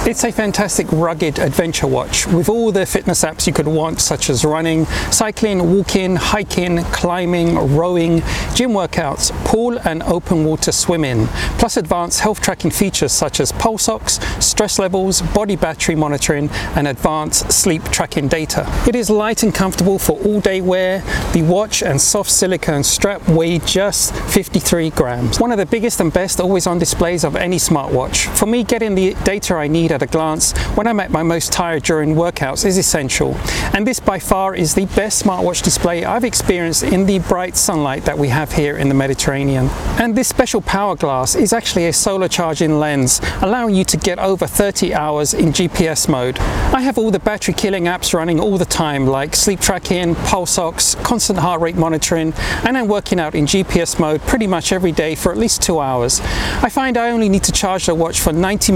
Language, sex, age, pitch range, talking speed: English, male, 40-59, 160-205 Hz, 195 wpm